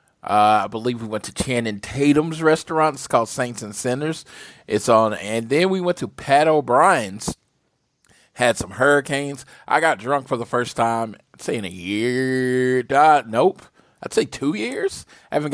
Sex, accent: male, American